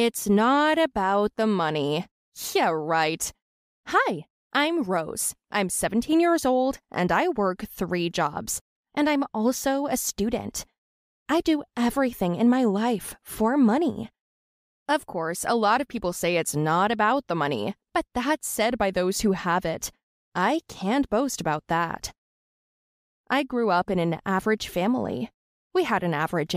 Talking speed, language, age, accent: 155 wpm, English, 20-39, American